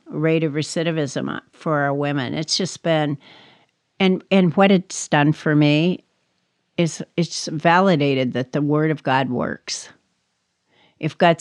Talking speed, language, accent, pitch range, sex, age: 140 wpm, English, American, 150-190 Hz, female, 60-79